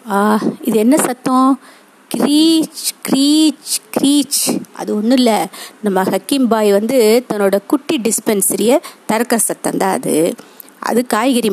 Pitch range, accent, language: 195-260 Hz, native, Tamil